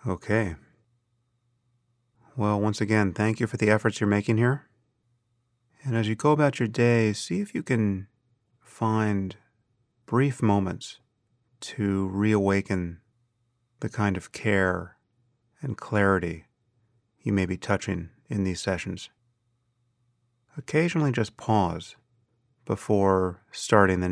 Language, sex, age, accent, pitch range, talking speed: English, male, 30-49, American, 105-120 Hz, 115 wpm